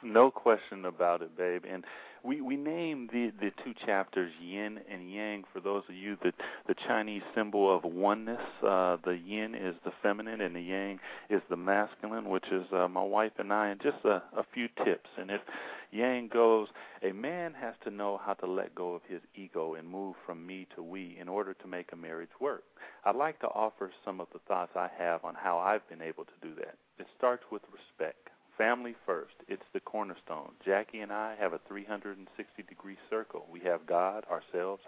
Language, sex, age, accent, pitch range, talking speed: English, male, 40-59, American, 90-110 Hz, 205 wpm